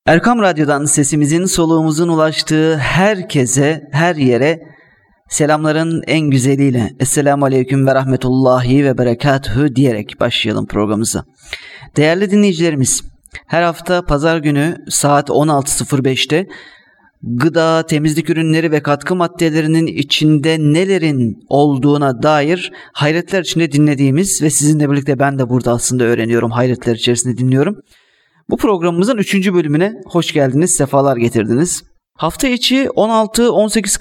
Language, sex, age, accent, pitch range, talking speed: Turkish, male, 30-49, native, 140-180 Hz, 110 wpm